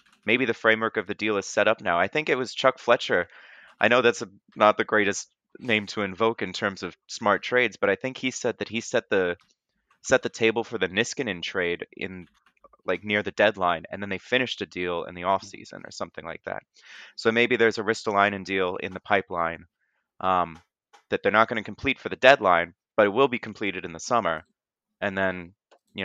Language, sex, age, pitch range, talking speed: English, male, 20-39, 95-115 Hz, 220 wpm